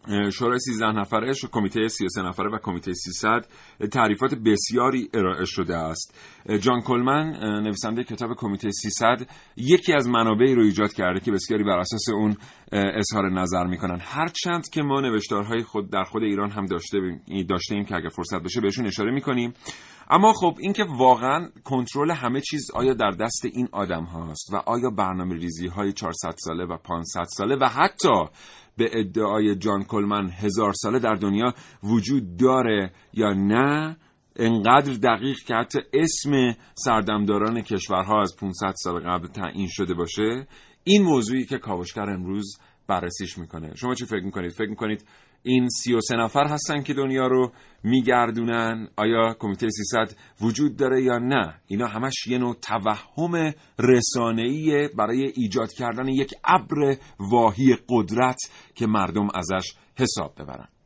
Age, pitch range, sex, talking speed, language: 40-59, 100-130 Hz, male, 150 wpm, Persian